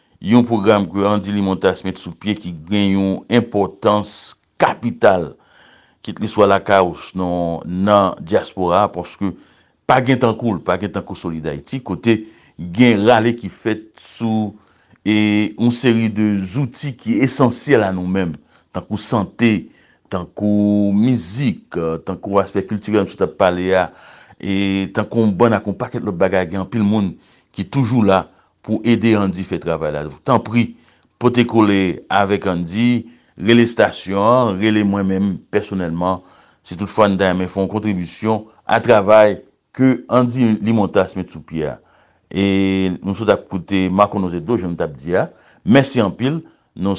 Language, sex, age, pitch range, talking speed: English, male, 60-79, 95-110 Hz, 165 wpm